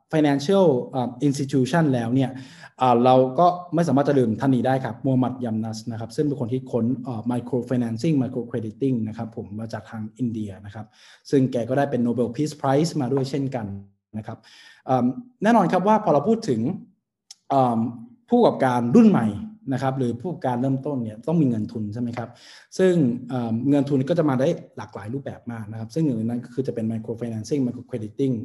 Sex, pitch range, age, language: male, 115-145 Hz, 20-39, English